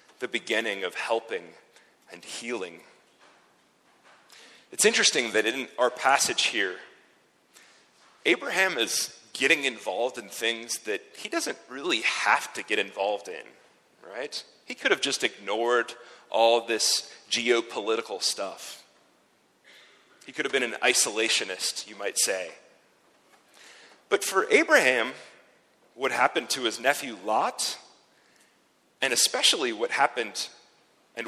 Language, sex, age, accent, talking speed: English, male, 30-49, American, 115 wpm